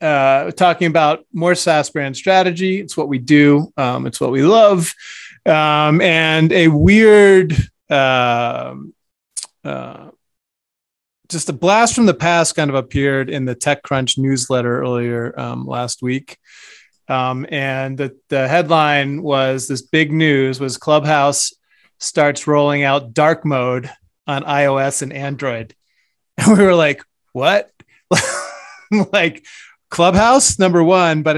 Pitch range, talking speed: 135-175 Hz, 130 wpm